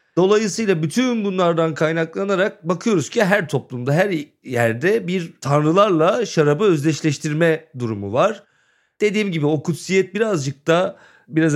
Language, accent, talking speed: Turkish, native, 120 wpm